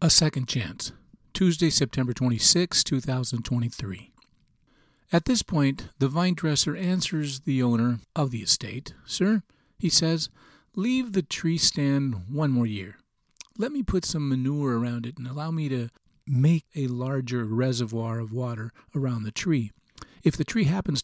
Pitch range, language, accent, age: 130-180 Hz, English, American, 50-69